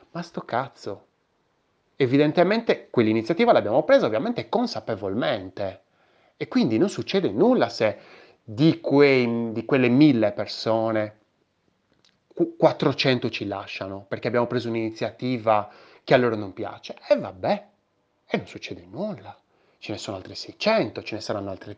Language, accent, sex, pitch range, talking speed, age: Italian, native, male, 110-170 Hz, 130 wpm, 30-49